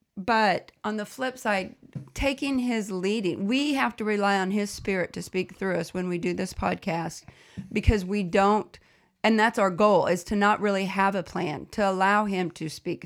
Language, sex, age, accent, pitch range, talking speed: English, female, 40-59, American, 185-220 Hz, 200 wpm